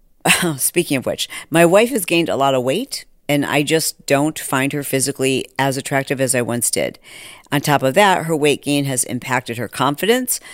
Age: 50-69